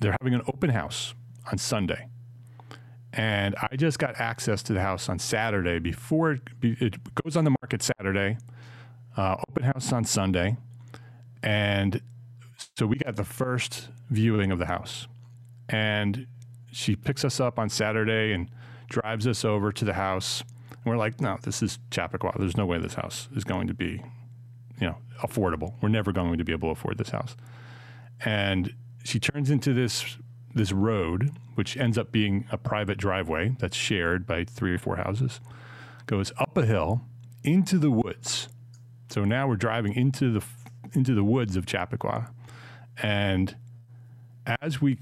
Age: 30-49